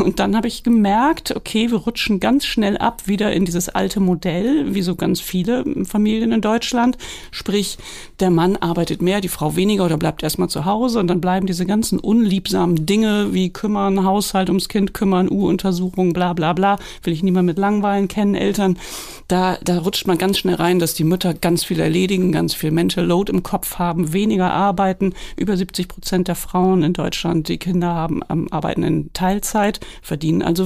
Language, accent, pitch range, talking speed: German, German, 175-205 Hz, 190 wpm